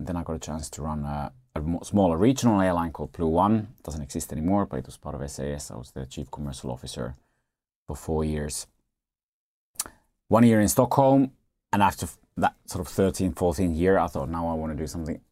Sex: male